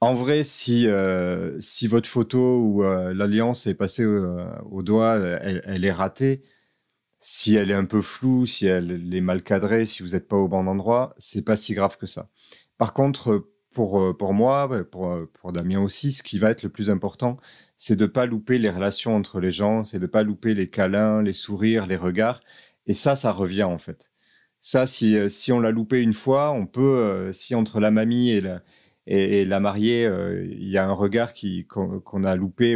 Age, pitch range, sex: 30-49, 95-115 Hz, male